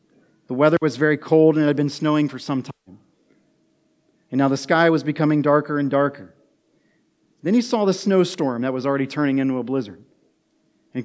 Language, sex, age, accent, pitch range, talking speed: English, male, 40-59, American, 140-170 Hz, 190 wpm